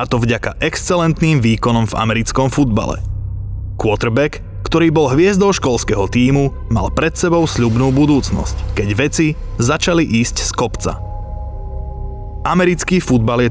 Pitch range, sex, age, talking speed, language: 105-160 Hz, male, 30-49, 125 wpm, Slovak